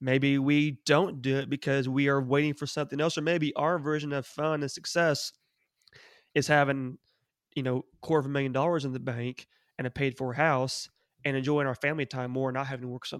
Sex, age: male, 20-39